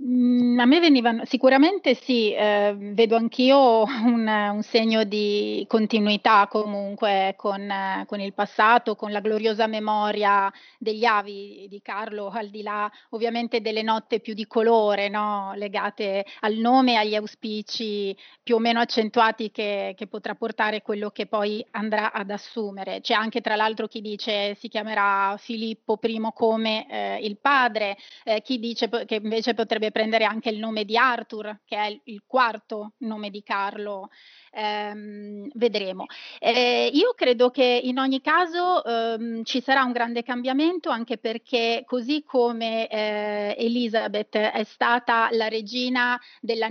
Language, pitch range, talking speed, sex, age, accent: Italian, 210-235 Hz, 145 wpm, female, 30-49, native